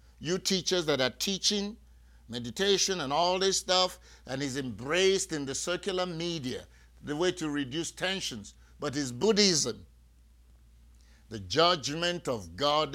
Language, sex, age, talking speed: English, male, 50-69, 135 wpm